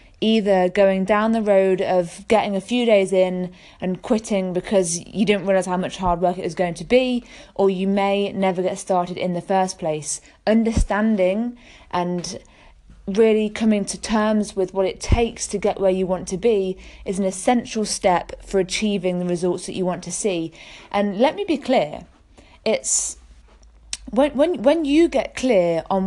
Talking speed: 180 wpm